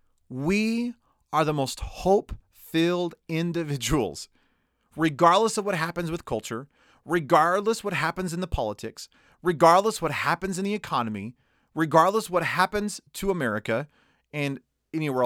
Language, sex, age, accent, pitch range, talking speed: English, male, 30-49, American, 120-180 Hz, 120 wpm